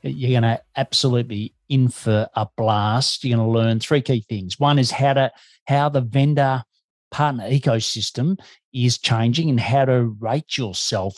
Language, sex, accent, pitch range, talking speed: English, male, Australian, 115-140 Hz, 170 wpm